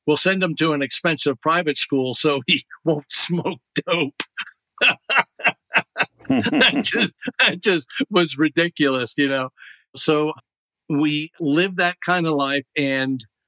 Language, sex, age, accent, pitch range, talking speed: English, male, 50-69, American, 140-165 Hz, 125 wpm